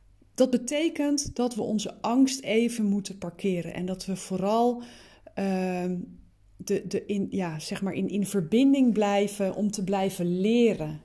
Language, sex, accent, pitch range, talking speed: Dutch, female, Dutch, 180-220 Hz, 150 wpm